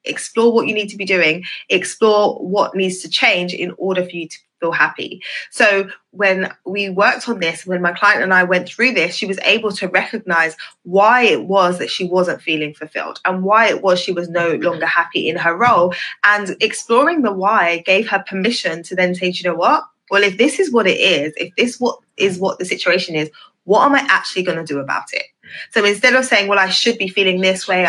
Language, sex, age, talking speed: English, female, 20-39, 230 wpm